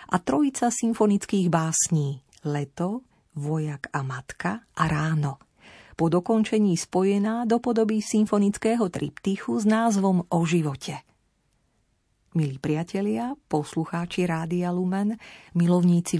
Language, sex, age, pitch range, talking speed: Slovak, female, 40-59, 150-195 Hz, 105 wpm